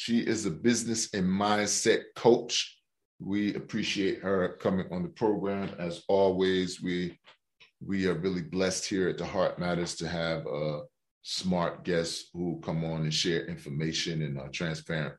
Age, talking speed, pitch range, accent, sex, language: 30-49, 160 wpm, 80-95 Hz, American, male, English